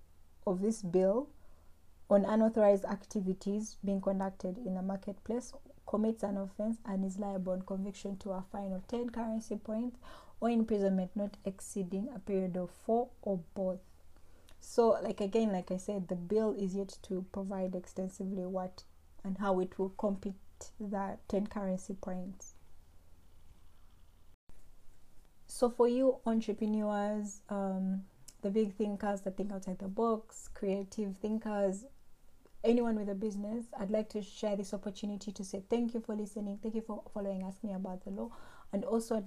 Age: 20-39